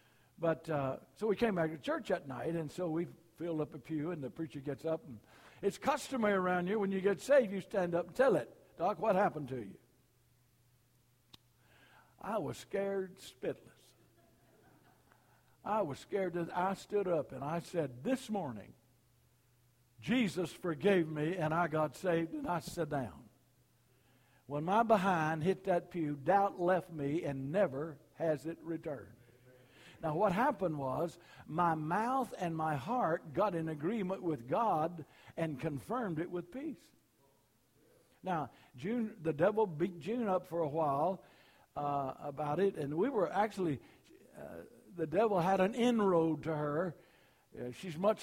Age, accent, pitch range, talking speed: 60-79, American, 145-190 Hz, 160 wpm